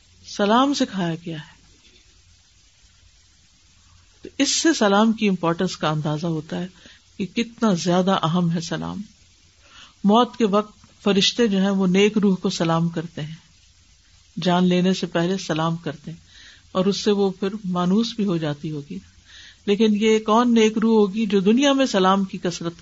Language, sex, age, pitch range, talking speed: Urdu, female, 50-69, 165-200 Hz, 165 wpm